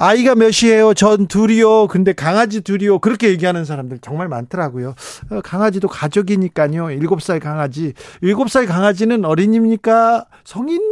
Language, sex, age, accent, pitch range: Korean, male, 40-59, native, 140-205 Hz